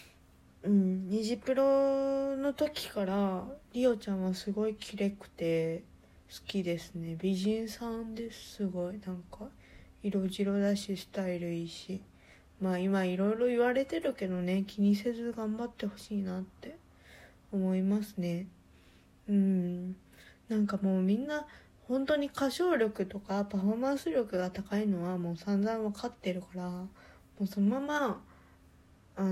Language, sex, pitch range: Japanese, female, 190-225 Hz